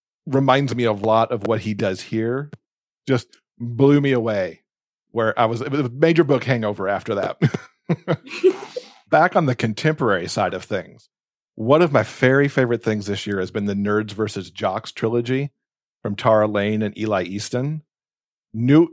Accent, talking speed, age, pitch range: American, 165 wpm, 40-59, 110-140 Hz